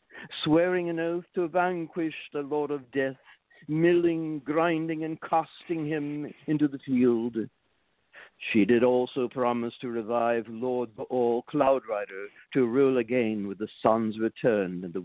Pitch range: 115-150 Hz